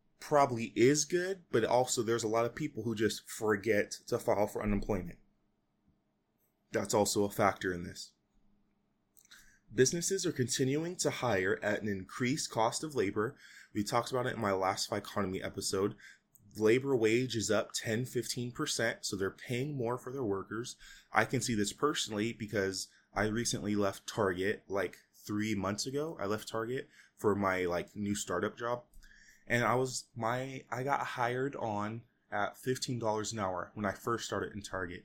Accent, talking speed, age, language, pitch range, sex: American, 170 wpm, 20-39, English, 100-120 Hz, male